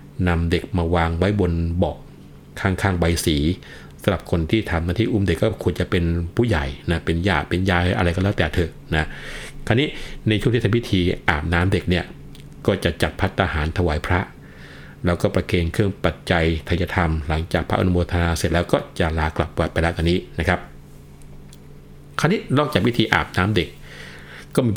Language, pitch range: Thai, 80-95 Hz